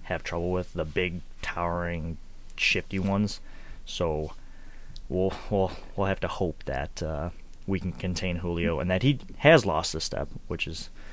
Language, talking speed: English, 160 wpm